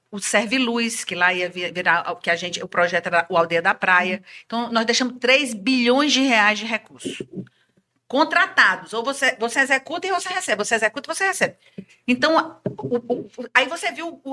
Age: 50-69